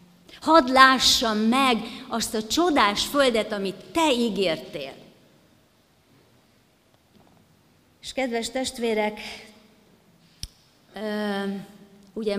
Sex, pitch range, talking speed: female, 190-235 Hz, 70 wpm